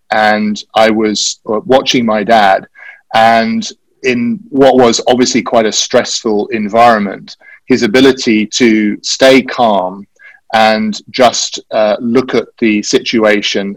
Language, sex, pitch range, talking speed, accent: English, male, 105-130 Hz, 120 wpm, British